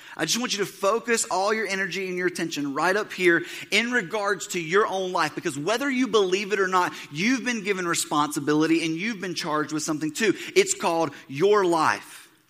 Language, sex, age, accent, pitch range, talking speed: English, male, 30-49, American, 130-200 Hz, 205 wpm